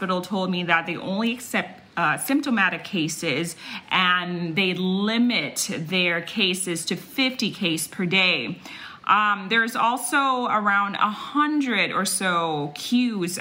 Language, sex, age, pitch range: Thai, female, 30-49, 170-220 Hz